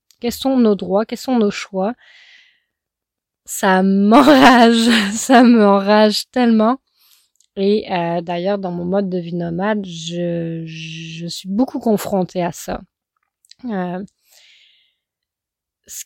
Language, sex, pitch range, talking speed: French, female, 180-220 Hz, 115 wpm